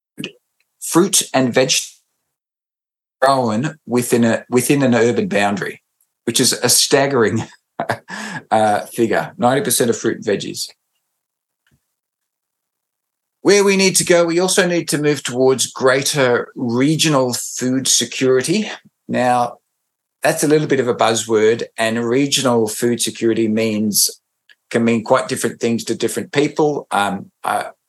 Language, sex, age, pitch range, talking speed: English, male, 50-69, 115-155 Hz, 130 wpm